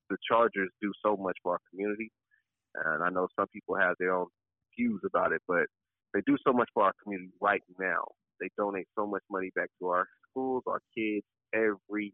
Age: 30-49